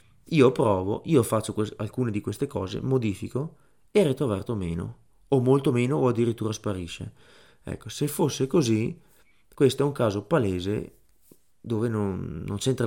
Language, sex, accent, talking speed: Italian, male, native, 145 wpm